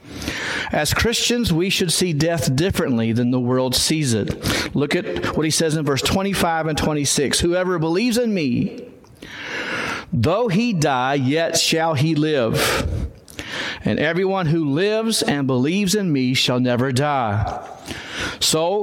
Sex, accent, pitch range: male, American, 150-190 Hz